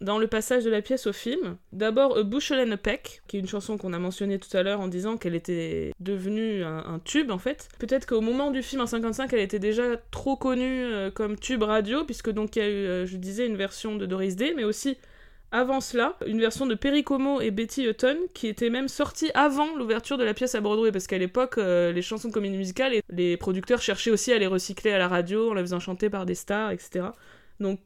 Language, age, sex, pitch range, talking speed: French, 20-39, female, 190-240 Hz, 245 wpm